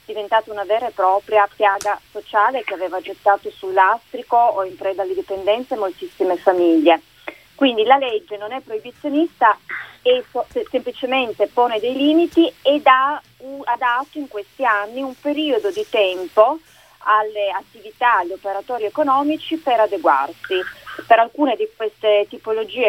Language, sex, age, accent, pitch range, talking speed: Italian, female, 30-49, native, 200-270 Hz, 135 wpm